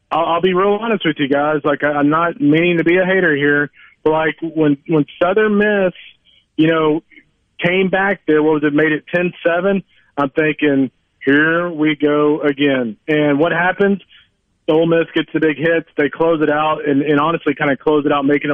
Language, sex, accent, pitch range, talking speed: English, male, American, 145-170 Hz, 195 wpm